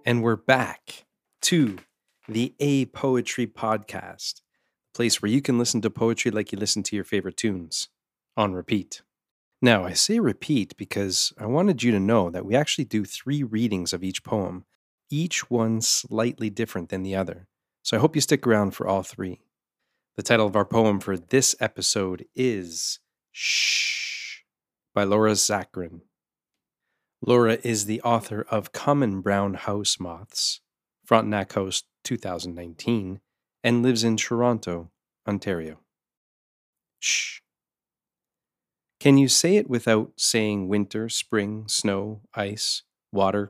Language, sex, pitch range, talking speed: English, male, 95-120 Hz, 140 wpm